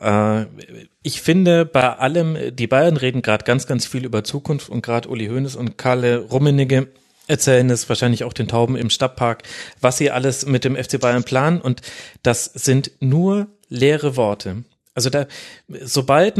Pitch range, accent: 120-150 Hz, German